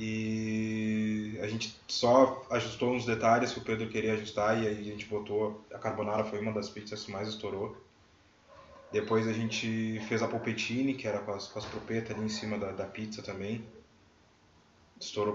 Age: 20-39